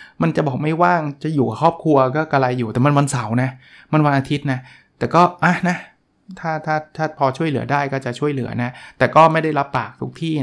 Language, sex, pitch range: Thai, male, 125-155 Hz